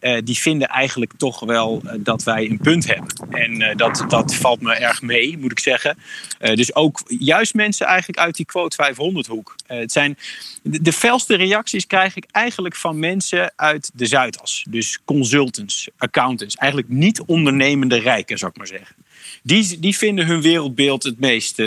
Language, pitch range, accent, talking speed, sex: Dutch, 125-175 Hz, Dutch, 180 wpm, male